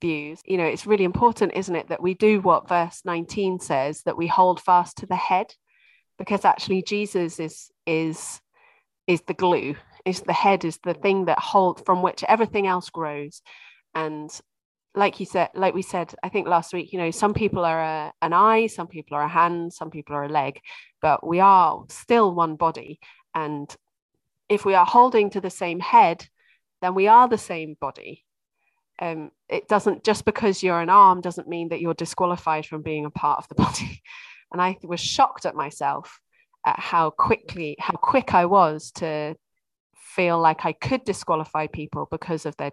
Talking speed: 190 wpm